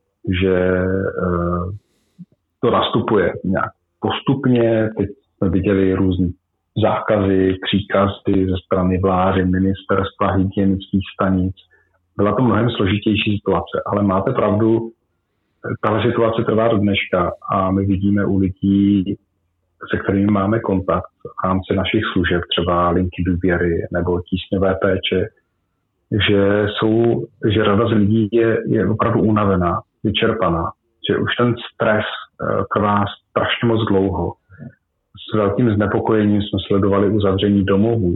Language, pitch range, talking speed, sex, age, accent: Czech, 95-110 Hz, 120 wpm, male, 40-59, native